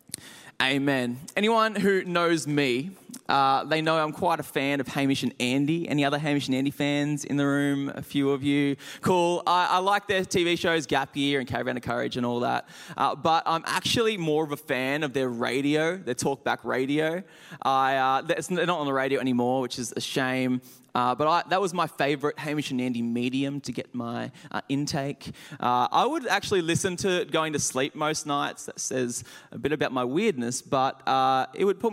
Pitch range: 130-165 Hz